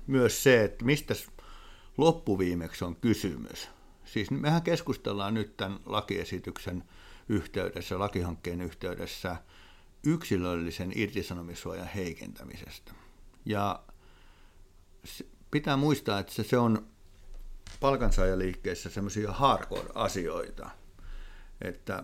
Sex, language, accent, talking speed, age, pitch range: male, Finnish, native, 80 wpm, 60-79, 90-110 Hz